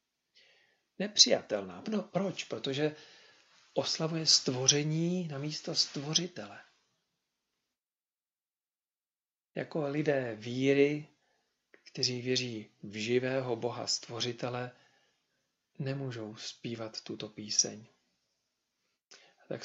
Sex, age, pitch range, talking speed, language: male, 40-59, 120-145 Hz, 70 wpm, Czech